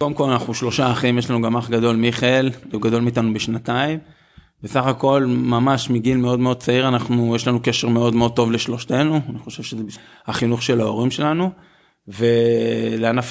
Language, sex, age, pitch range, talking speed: Hebrew, male, 20-39, 115-135 Hz, 170 wpm